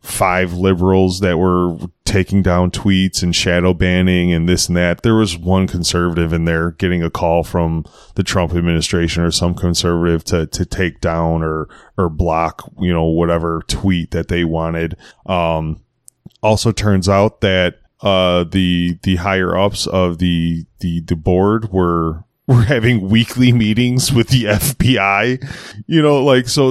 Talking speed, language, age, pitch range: 160 wpm, English, 20-39, 90-115 Hz